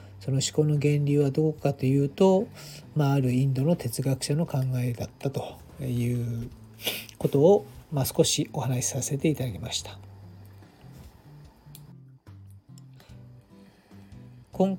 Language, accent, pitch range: Japanese, native, 115-150 Hz